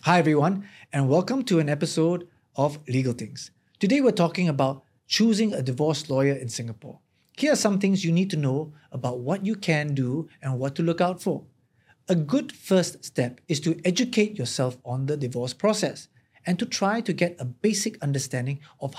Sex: male